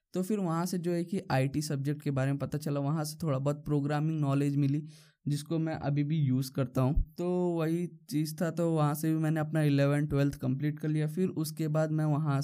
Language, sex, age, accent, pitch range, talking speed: Hindi, male, 20-39, native, 135-155 Hz, 230 wpm